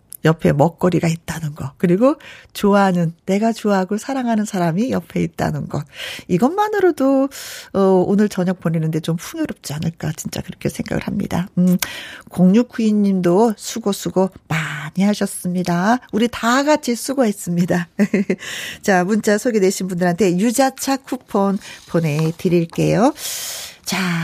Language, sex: Korean, female